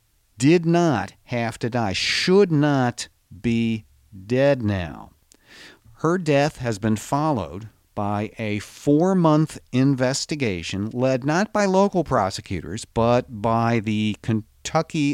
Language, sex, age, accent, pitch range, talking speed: English, male, 50-69, American, 110-150 Hz, 115 wpm